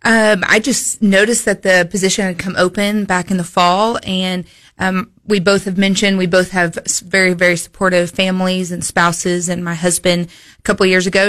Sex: female